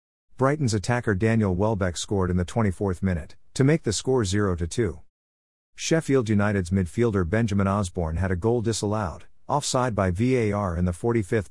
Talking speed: 150 wpm